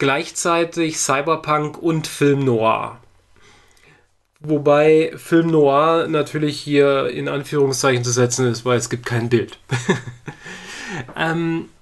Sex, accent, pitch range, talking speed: male, German, 125-150 Hz, 95 wpm